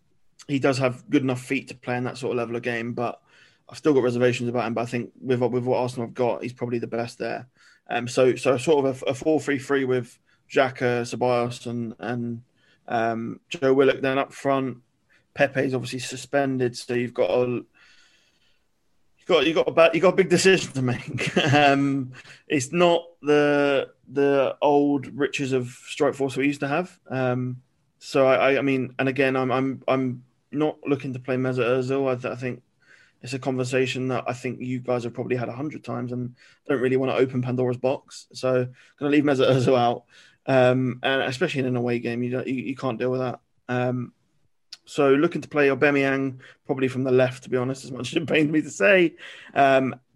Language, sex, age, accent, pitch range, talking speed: English, male, 20-39, British, 125-140 Hz, 210 wpm